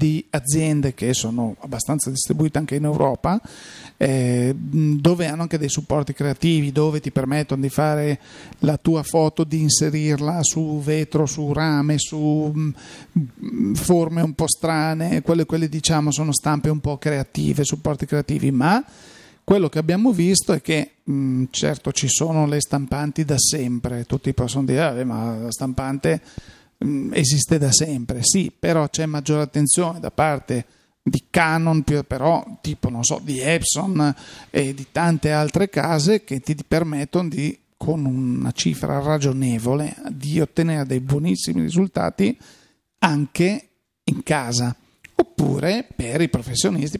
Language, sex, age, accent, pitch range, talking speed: Italian, male, 40-59, native, 135-160 Hz, 140 wpm